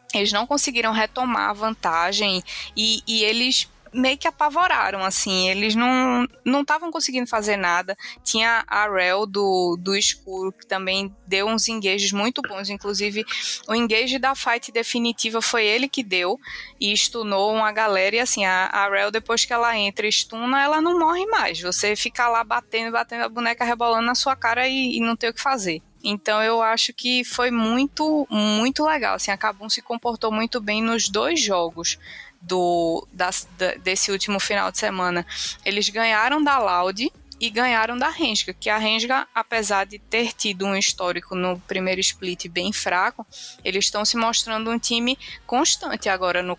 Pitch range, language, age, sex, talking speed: 195-240 Hz, Portuguese, 20-39, female, 175 wpm